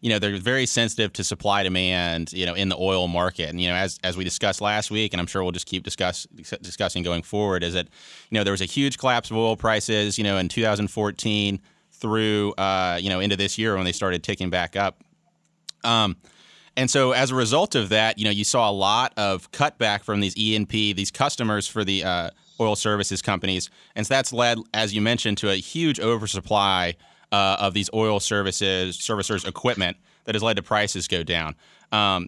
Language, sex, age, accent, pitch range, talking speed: English, male, 30-49, American, 95-115 Hz, 215 wpm